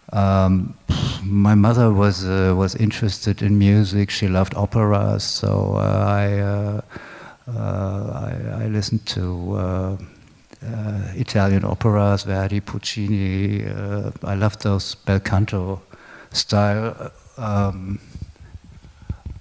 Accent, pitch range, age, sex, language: German, 95-110 Hz, 50-69, male, Chinese